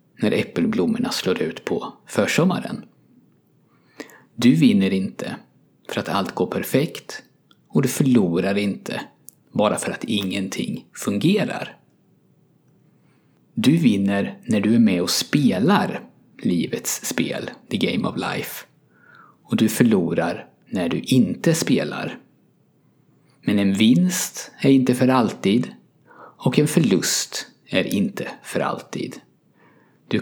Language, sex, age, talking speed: Swedish, male, 50-69, 115 wpm